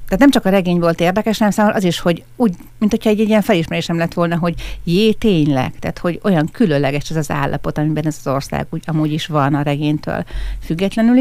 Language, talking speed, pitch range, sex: Hungarian, 235 wpm, 160-210 Hz, female